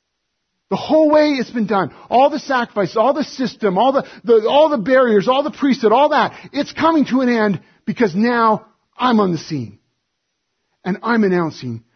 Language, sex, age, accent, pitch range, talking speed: English, male, 40-59, American, 185-260 Hz, 185 wpm